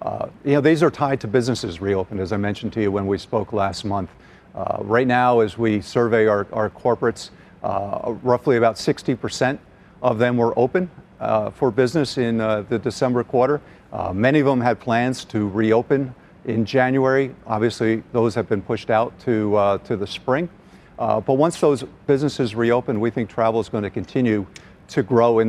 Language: English